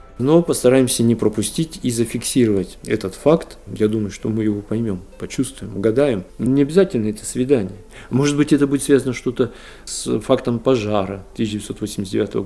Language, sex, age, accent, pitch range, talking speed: Russian, male, 50-69, native, 110-140 Hz, 145 wpm